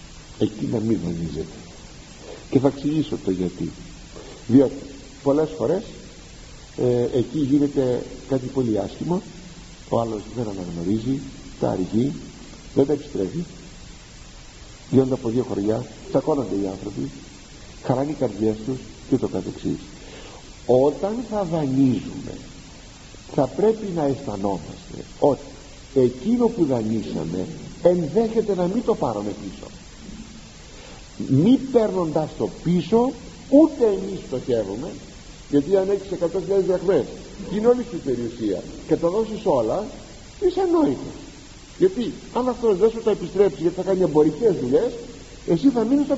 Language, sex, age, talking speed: Greek, male, 50-69, 125 wpm